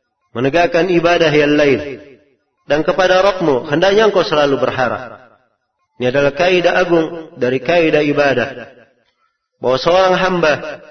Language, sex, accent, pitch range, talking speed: Indonesian, male, native, 140-175 Hz, 115 wpm